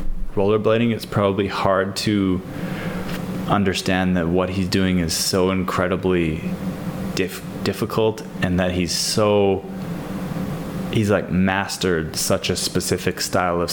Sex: male